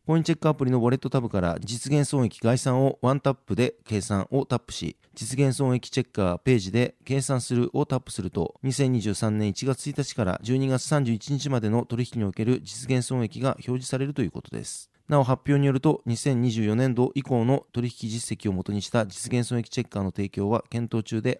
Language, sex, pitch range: Japanese, male, 110-135 Hz